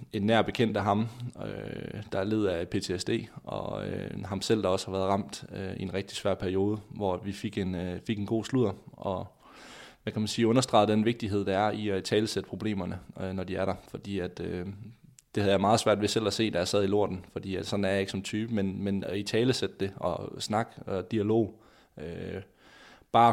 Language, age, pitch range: Danish, 20-39, 95-115 Hz